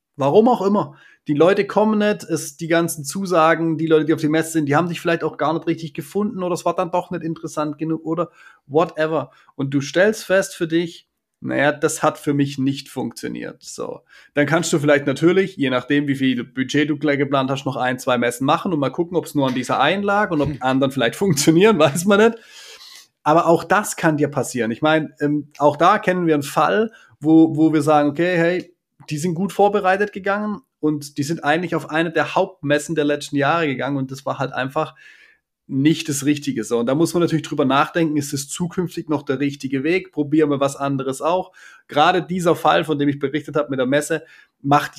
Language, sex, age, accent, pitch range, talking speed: German, male, 30-49, German, 145-175 Hz, 225 wpm